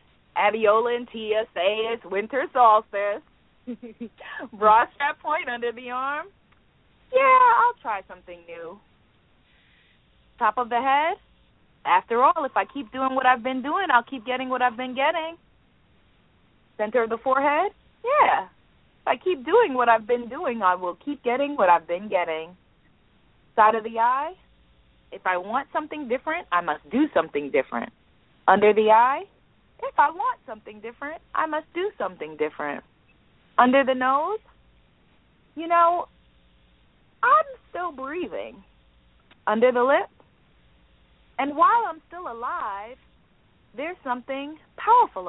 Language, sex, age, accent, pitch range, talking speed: English, female, 30-49, American, 215-315 Hz, 140 wpm